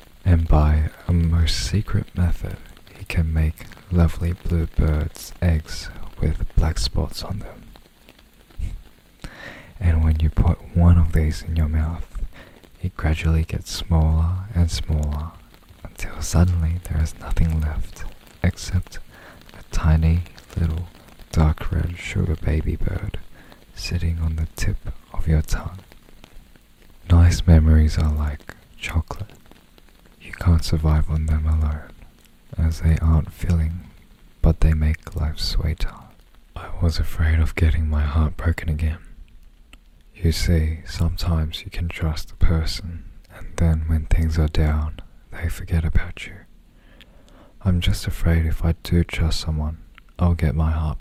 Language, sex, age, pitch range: Korean, male, 20-39, 80-90 Hz